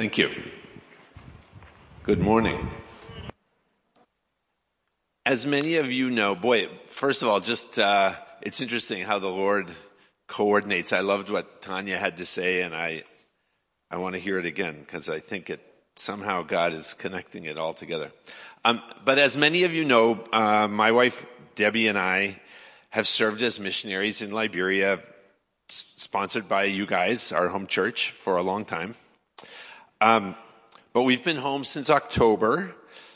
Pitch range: 100-125 Hz